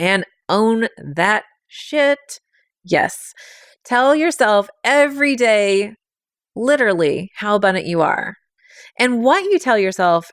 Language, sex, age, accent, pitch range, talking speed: English, female, 30-49, American, 175-225 Hz, 110 wpm